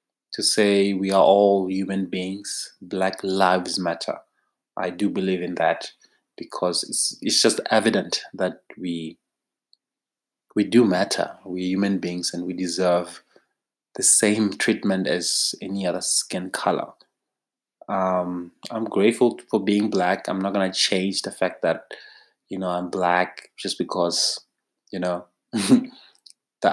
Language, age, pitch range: English, 20-39, 90-100 Hz